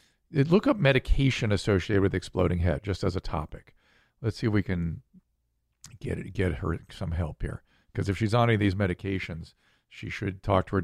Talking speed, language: 205 wpm, English